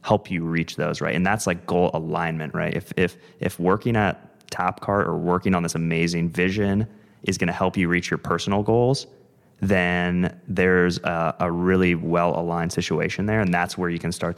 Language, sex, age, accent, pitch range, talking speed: English, male, 20-39, American, 85-90 Hz, 190 wpm